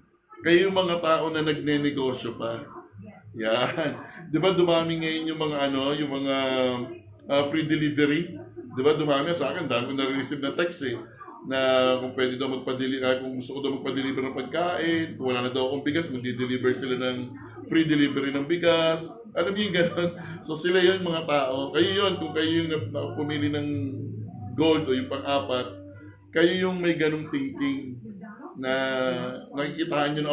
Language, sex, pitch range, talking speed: Filipino, male, 130-160 Hz, 160 wpm